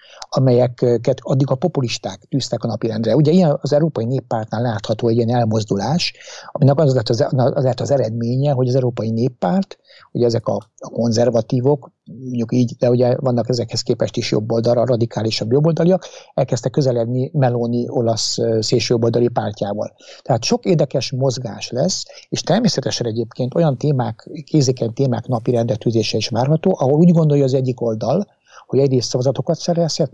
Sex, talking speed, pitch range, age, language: male, 150 wpm, 115-140 Hz, 60-79, Hungarian